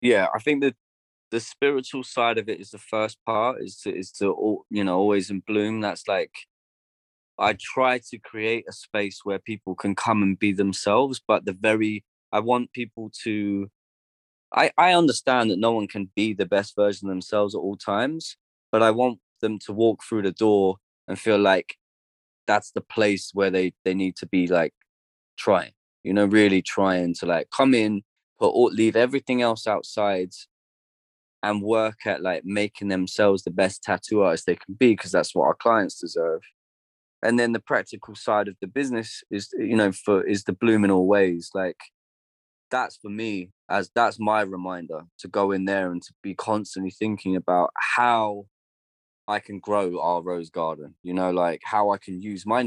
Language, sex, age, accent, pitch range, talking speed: English, male, 20-39, British, 95-110 Hz, 190 wpm